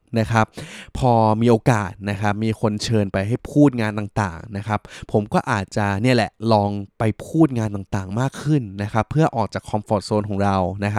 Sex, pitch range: male, 105-130 Hz